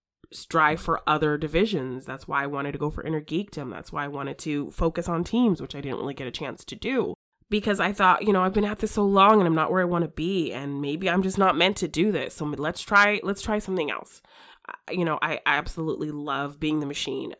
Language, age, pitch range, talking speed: English, 20-39, 145-180 Hz, 255 wpm